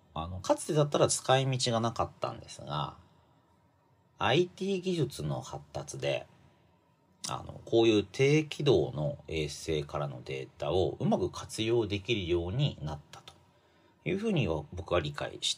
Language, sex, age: Japanese, male, 40-59